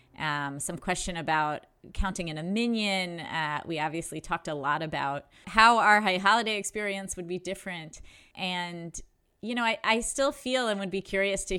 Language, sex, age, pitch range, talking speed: English, female, 30-49, 165-220 Hz, 180 wpm